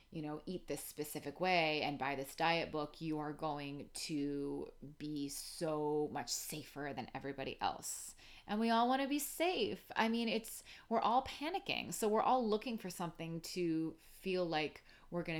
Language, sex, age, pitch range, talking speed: English, female, 30-49, 145-180 Hz, 180 wpm